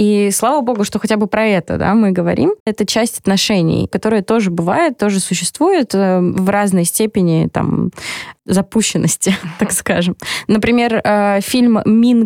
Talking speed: 140 wpm